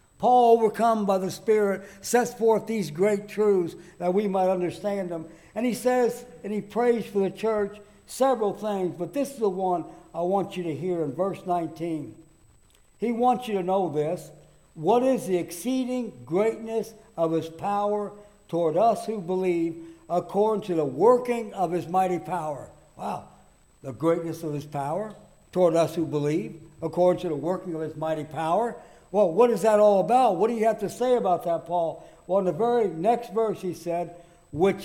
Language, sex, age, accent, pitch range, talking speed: English, male, 60-79, American, 165-210 Hz, 185 wpm